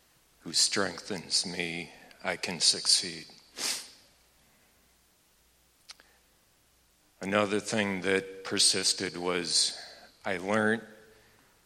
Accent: American